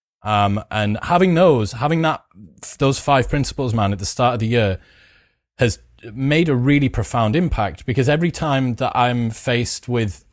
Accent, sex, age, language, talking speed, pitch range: British, male, 30-49, English, 170 wpm, 115-140 Hz